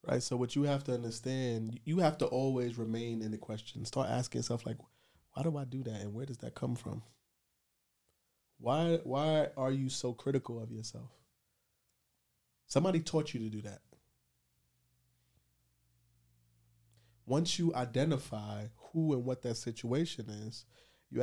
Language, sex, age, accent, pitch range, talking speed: English, male, 20-39, American, 105-130 Hz, 155 wpm